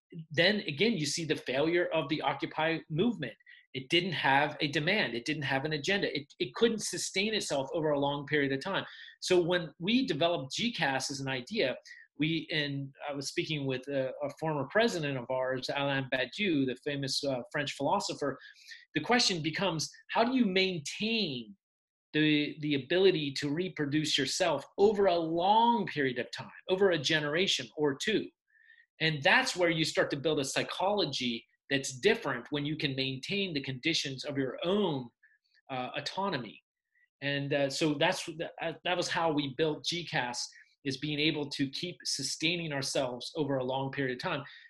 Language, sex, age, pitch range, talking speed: Persian, male, 30-49, 140-185 Hz, 170 wpm